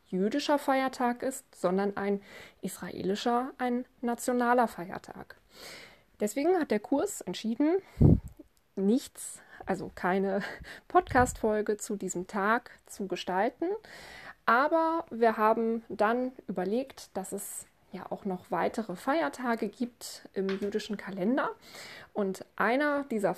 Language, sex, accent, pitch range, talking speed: German, female, German, 195-250 Hz, 110 wpm